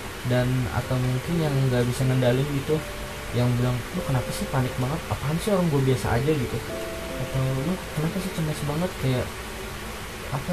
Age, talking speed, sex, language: 10-29, 165 wpm, male, Indonesian